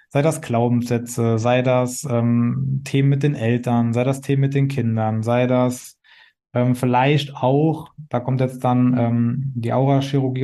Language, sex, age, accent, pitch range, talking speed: German, male, 20-39, German, 125-140 Hz, 160 wpm